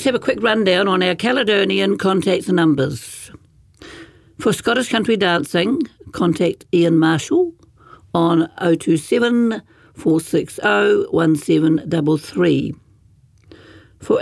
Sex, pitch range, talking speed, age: female, 145-185 Hz, 120 wpm, 60-79